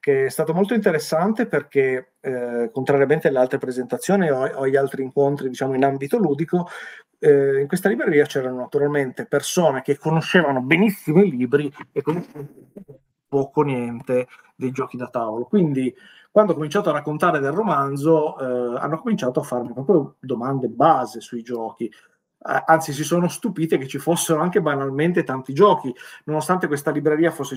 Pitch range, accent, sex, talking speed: 130-165 Hz, native, male, 155 wpm